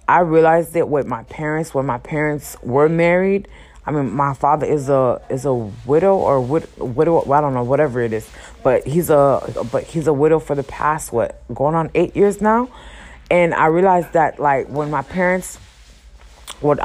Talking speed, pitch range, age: 200 wpm, 125-155 Hz, 20-39